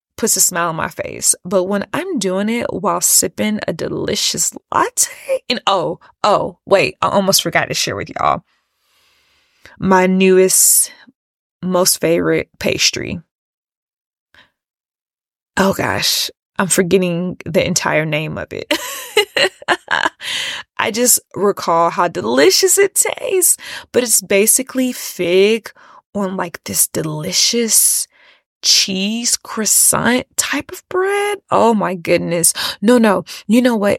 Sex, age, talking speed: female, 20-39, 120 wpm